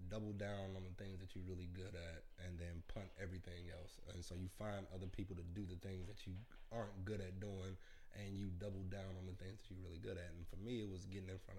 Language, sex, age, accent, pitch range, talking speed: English, male, 20-39, American, 90-105 Hz, 265 wpm